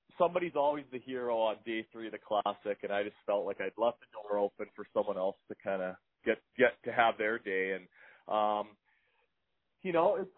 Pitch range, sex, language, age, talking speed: 110-145 Hz, male, English, 30-49, 215 wpm